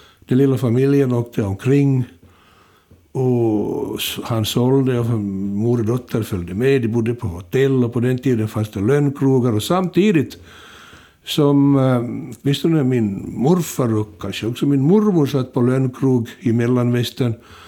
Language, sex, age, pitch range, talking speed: Swedish, male, 60-79, 105-135 Hz, 140 wpm